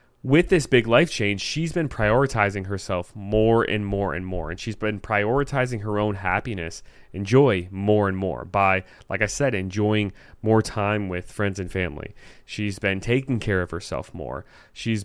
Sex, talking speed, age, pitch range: male, 180 wpm, 30-49, 100-130 Hz